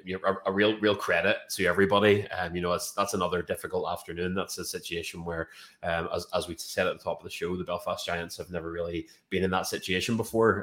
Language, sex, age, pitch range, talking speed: English, male, 20-39, 85-95 Hz, 230 wpm